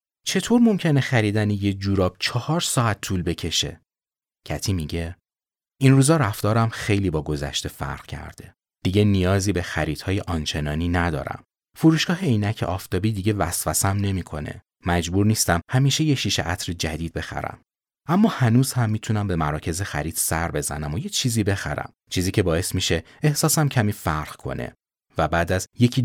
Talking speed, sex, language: 145 wpm, male, Persian